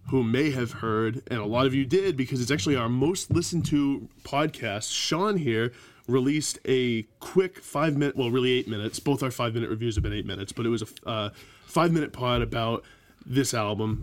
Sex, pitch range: male, 115-140 Hz